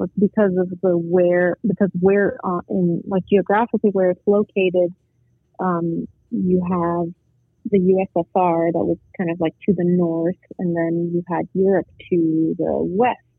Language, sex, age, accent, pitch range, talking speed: English, female, 30-49, American, 170-195 Hz, 150 wpm